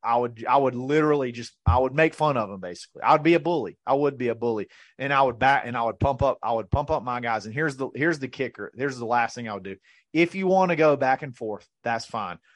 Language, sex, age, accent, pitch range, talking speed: English, male, 30-49, American, 120-150 Hz, 285 wpm